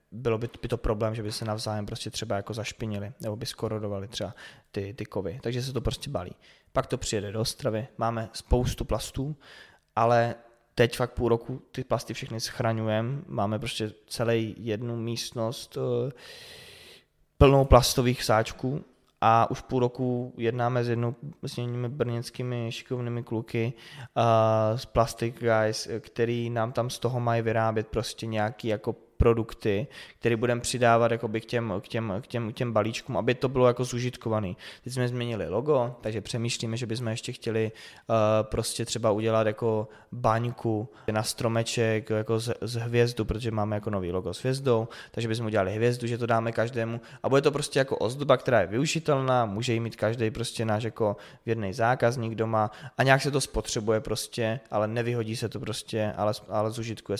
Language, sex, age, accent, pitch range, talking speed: Czech, male, 20-39, native, 110-120 Hz, 165 wpm